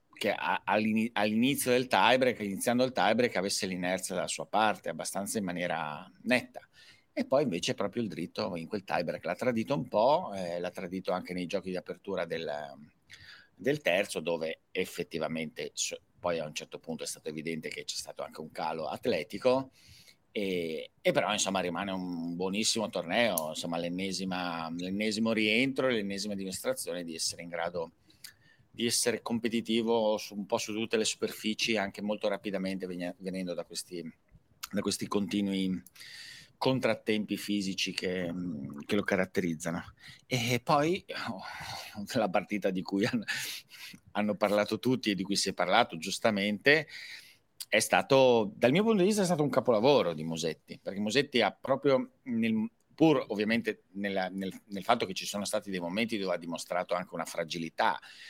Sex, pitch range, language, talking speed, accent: male, 90-115 Hz, Italian, 155 wpm, native